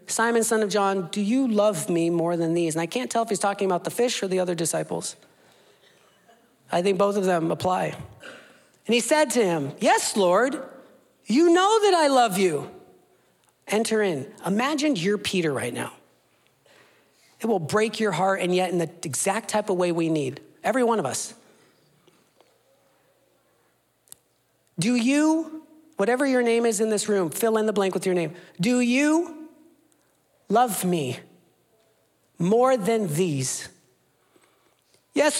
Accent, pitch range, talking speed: American, 190-285 Hz, 160 wpm